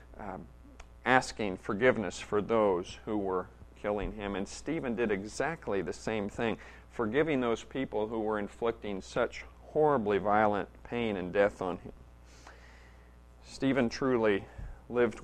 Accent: American